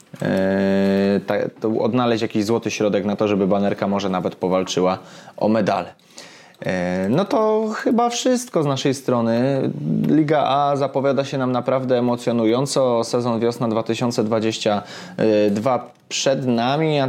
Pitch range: 105-130 Hz